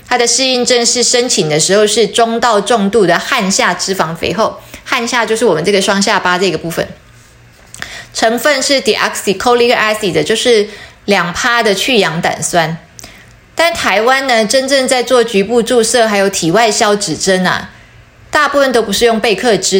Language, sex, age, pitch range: Chinese, female, 20-39, 195-240 Hz